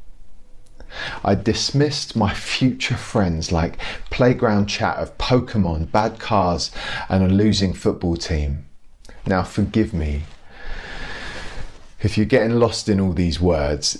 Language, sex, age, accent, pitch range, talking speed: English, male, 30-49, British, 85-110 Hz, 120 wpm